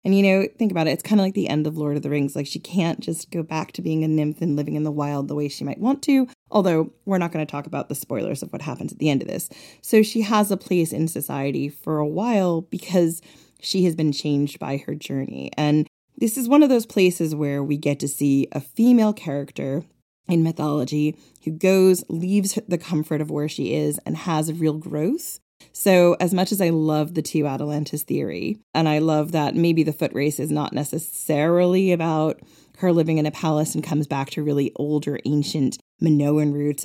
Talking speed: 225 wpm